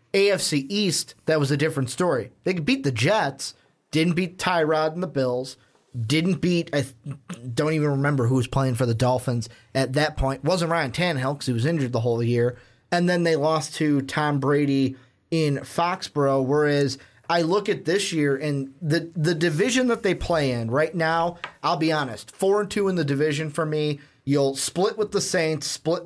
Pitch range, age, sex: 135-170 Hz, 30-49, male